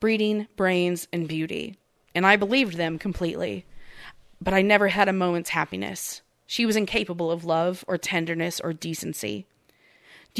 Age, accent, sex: 30-49, American, female